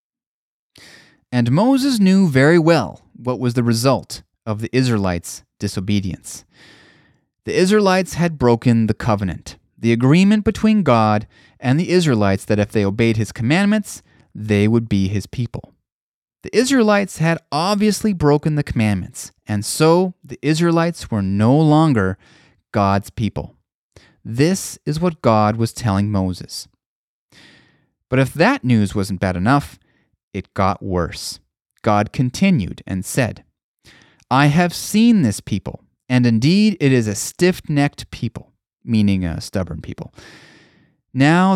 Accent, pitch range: American, 100-150 Hz